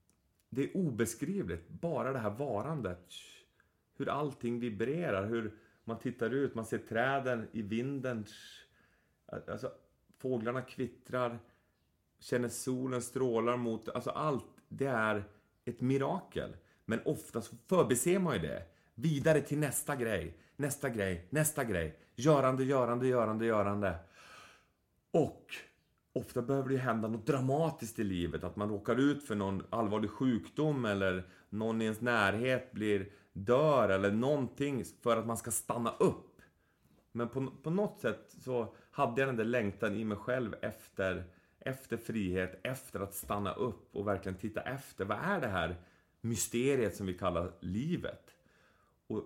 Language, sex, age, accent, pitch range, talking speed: English, male, 30-49, Swedish, 100-130 Hz, 140 wpm